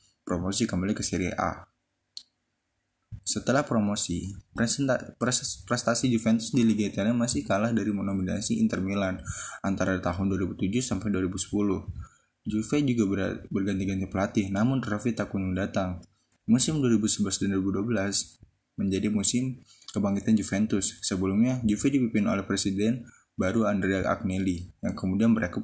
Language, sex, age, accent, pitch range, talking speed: Indonesian, male, 20-39, native, 95-115 Hz, 115 wpm